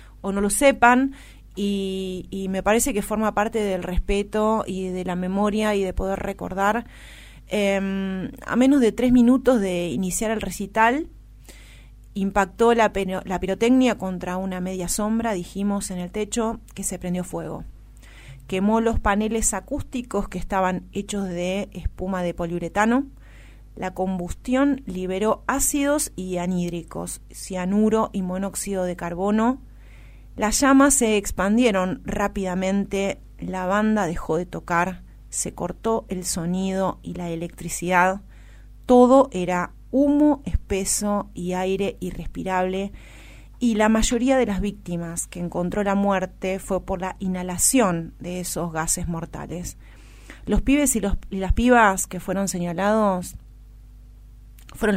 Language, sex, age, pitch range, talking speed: Spanish, female, 30-49, 175-210 Hz, 130 wpm